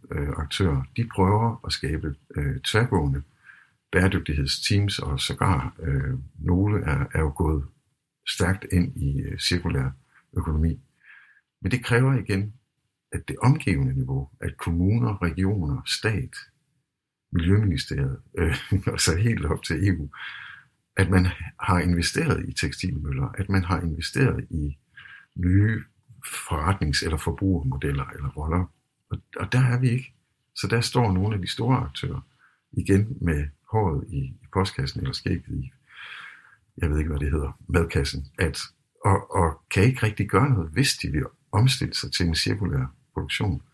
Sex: male